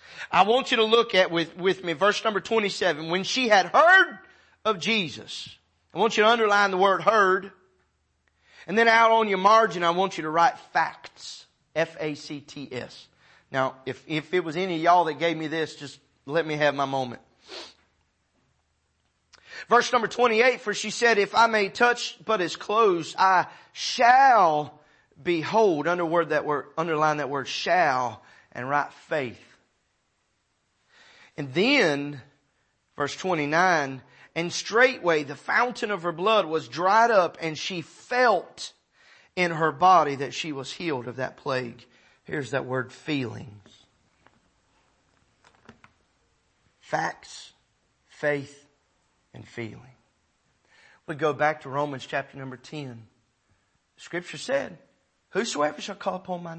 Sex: male